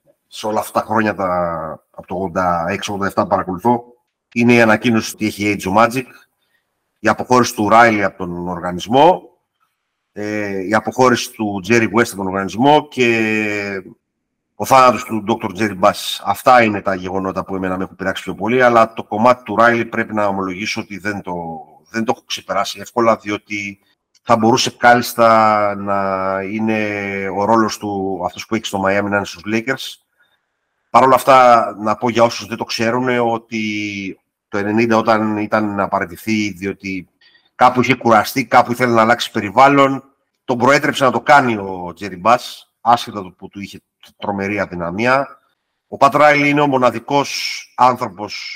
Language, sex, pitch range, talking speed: Greek, male, 100-120 Hz, 165 wpm